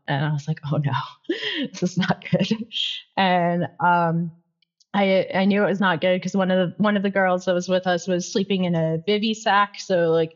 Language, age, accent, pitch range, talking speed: English, 20-39, American, 160-195 Hz, 225 wpm